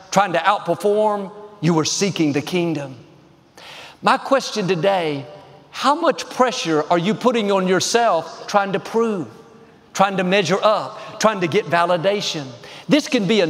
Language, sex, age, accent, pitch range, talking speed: English, male, 50-69, American, 175-230 Hz, 150 wpm